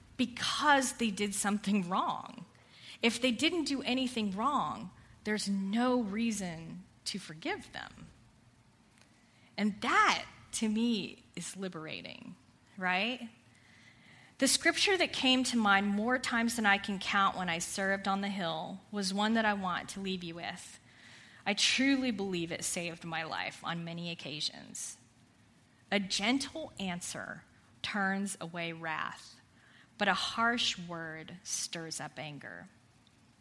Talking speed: 135 wpm